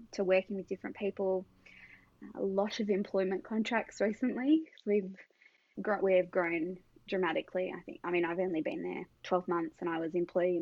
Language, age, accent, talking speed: English, 20-39, Australian, 175 wpm